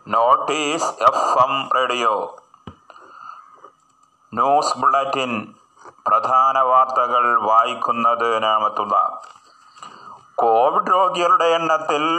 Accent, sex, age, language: native, male, 30-49, Malayalam